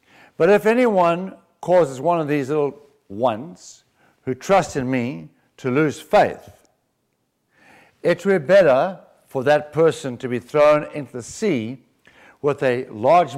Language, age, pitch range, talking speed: English, 60-79, 120-175 Hz, 145 wpm